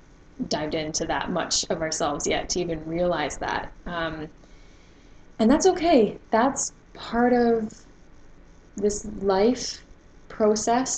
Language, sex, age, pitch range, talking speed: English, female, 10-29, 165-215 Hz, 115 wpm